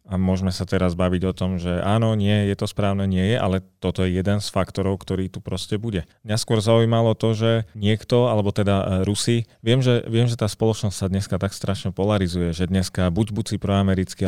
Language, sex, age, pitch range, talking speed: Slovak, male, 30-49, 95-115 Hz, 215 wpm